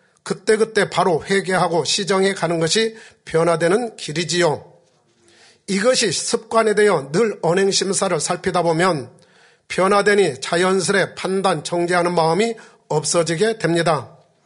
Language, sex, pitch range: Korean, male, 170-195 Hz